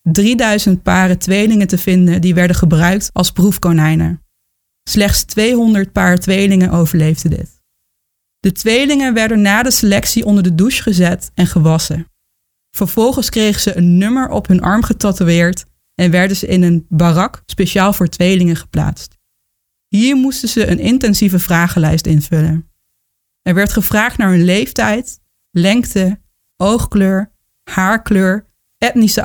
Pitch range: 175-215 Hz